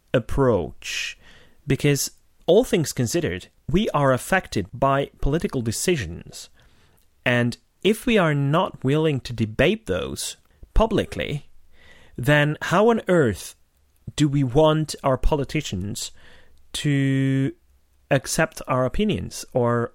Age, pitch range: 30-49, 120-155 Hz